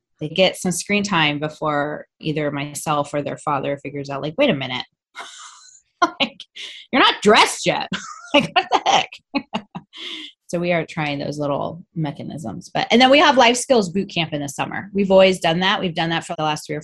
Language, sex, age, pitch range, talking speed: English, female, 20-39, 150-195 Hz, 205 wpm